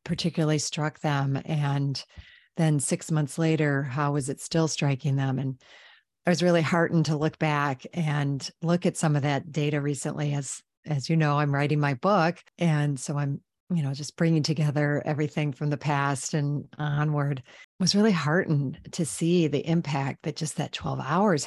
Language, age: English, 40-59